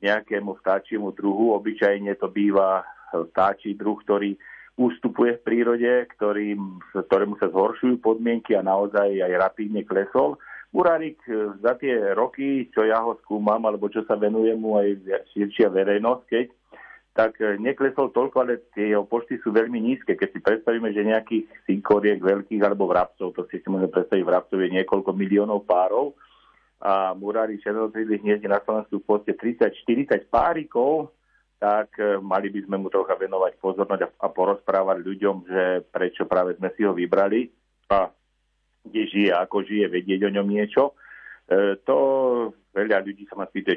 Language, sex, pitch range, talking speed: Slovak, male, 100-120 Hz, 150 wpm